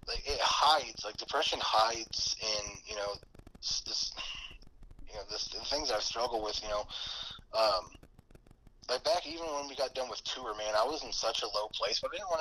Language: English